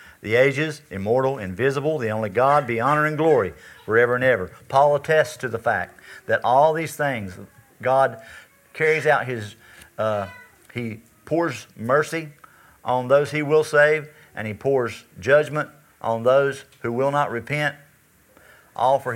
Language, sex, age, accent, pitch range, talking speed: English, male, 50-69, American, 110-135 Hz, 150 wpm